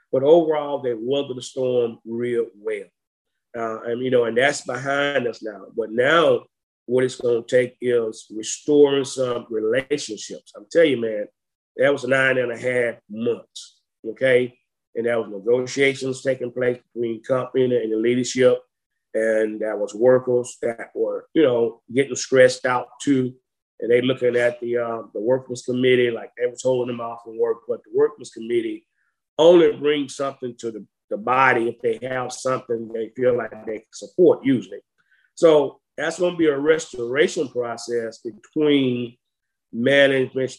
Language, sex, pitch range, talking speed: English, male, 120-150 Hz, 165 wpm